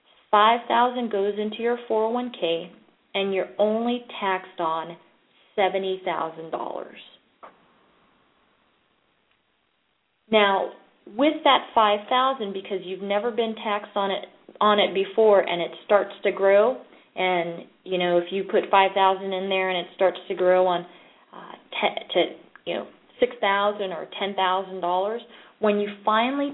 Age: 30-49